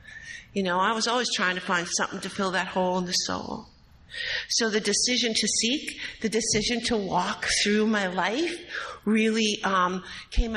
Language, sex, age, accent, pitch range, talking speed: English, female, 50-69, American, 200-295 Hz, 175 wpm